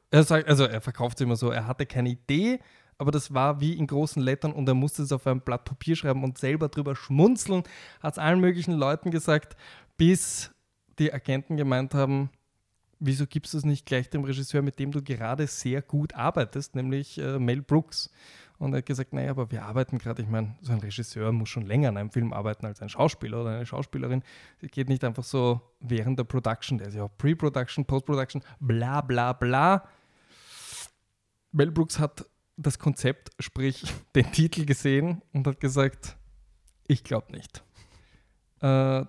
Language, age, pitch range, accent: German, 10-29, 125-155 Hz, German